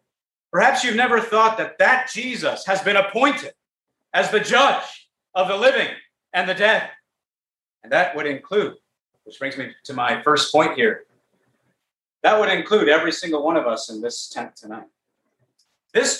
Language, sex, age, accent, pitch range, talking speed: English, male, 40-59, American, 170-240 Hz, 165 wpm